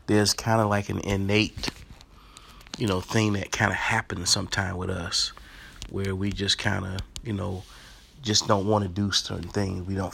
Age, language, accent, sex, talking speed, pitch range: 30-49, English, American, male, 190 wpm, 90-110 Hz